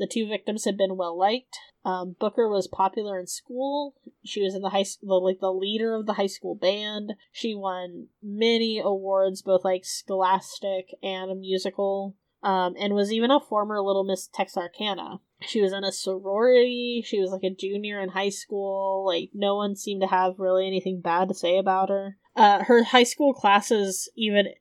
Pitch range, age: 190-215 Hz, 20-39